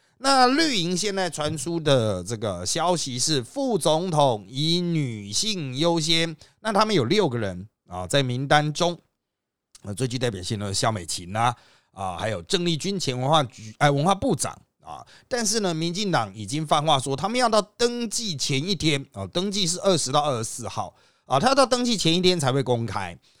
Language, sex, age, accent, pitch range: Chinese, male, 30-49, native, 110-170 Hz